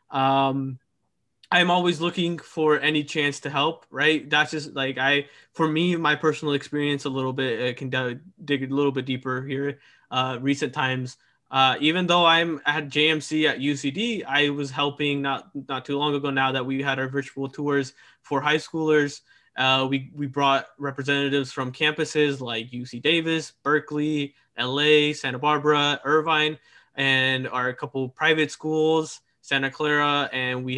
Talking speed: 165 wpm